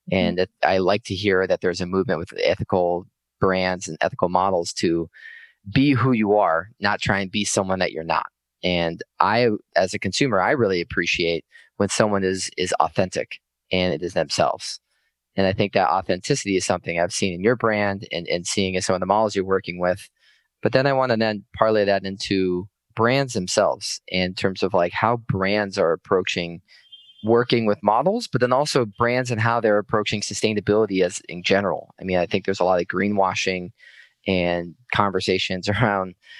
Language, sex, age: English, male, 30-49